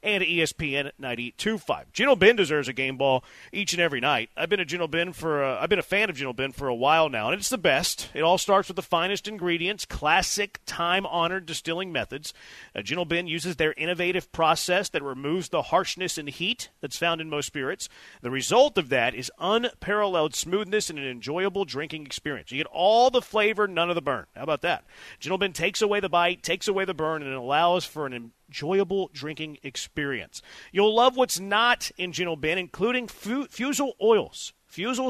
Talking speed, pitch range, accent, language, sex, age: 200 wpm, 155-205 Hz, American, English, male, 40-59